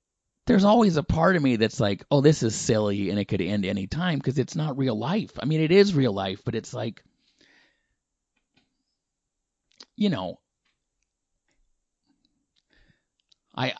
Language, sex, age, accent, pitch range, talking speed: English, male, 30-49, American, 110-150 Hz, 150 wpm